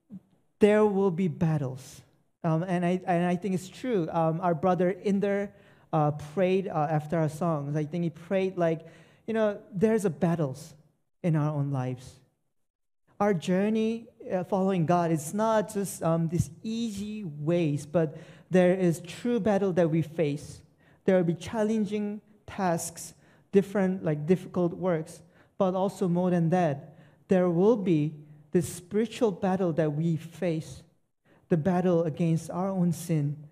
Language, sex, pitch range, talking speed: English, male, 150-185 Hz, 150 wpm